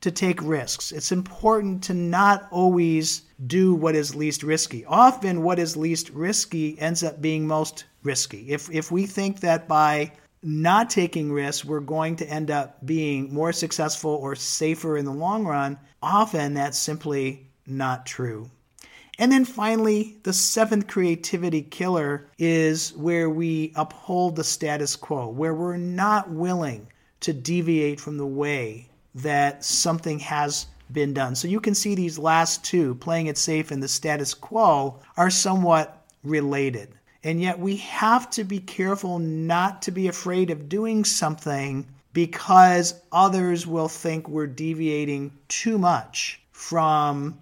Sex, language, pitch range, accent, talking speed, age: male, English, 145-175 Hz, American, 150 wpm, 50-69